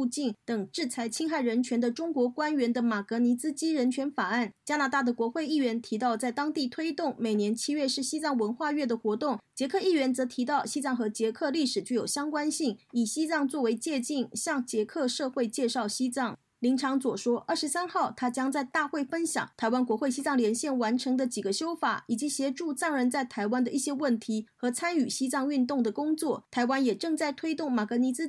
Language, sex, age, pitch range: Chinese, female, 30-49, 235-295 Hz